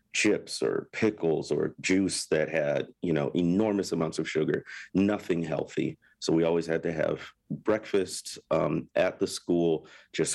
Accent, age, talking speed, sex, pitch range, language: American, 40-59, 155 wpm, male, 85-105 Hz, English